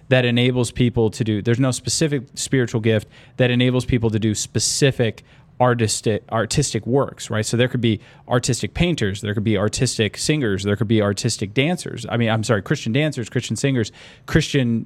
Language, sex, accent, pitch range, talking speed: English, male, American, 115-140 Hz, 180 wpm